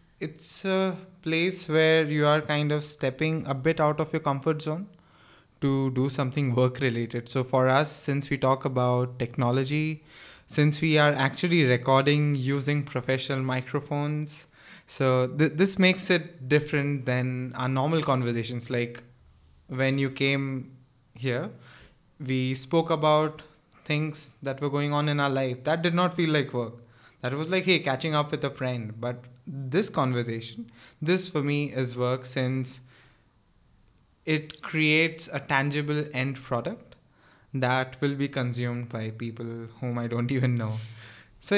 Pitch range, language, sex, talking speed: 125-155 Hz, English, male, 150 wpm